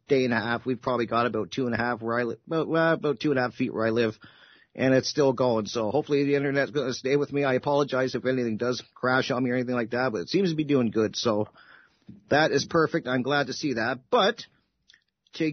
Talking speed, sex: 260 wpm, male